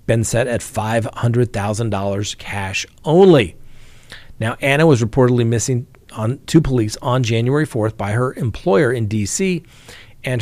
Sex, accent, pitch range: male, American, 110-145 Hz